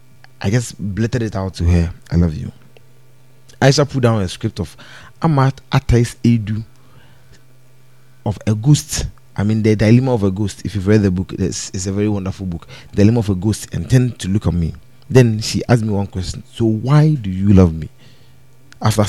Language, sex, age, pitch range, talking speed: English, male, 30-49, 95-130 Hz, 205 wpm